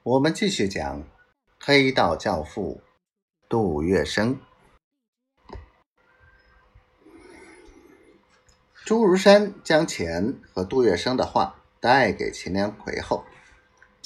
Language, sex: Chinese, male